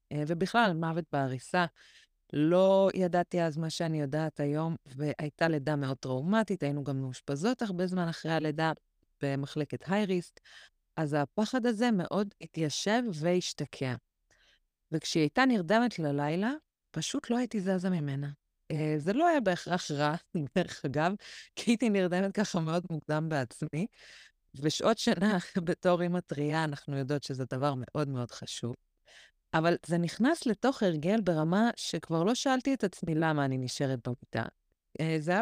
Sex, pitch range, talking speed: female, 150-200 Hz, 135 wpm